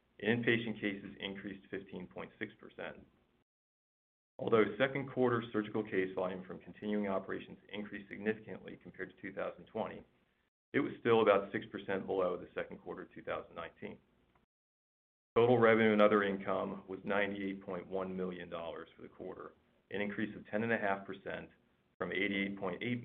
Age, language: 40-59, English